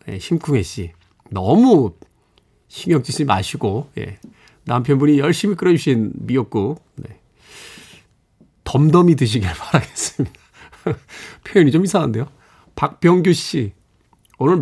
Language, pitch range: Korean, 125-190 Hz